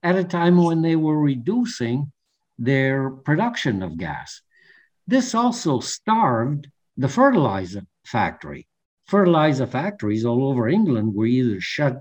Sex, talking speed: male, 125 wpm